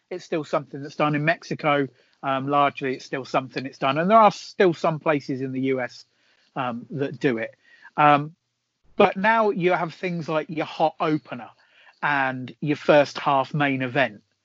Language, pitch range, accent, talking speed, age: English, 135-170 Hz, British, 180 wpm, 40-59